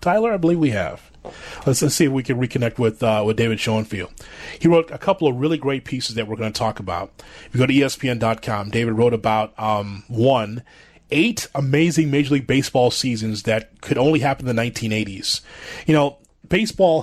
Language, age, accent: English, 30-49, American